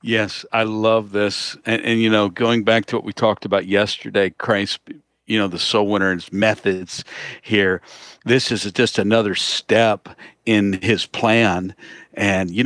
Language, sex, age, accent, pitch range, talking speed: English, male, 50-69, American, 110-135 Hz, 170 wpm